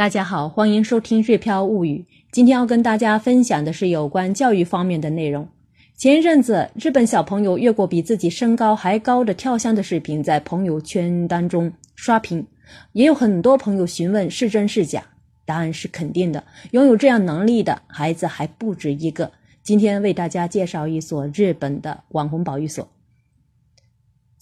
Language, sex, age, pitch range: Chinese, female, 20-39, 160-220 Hz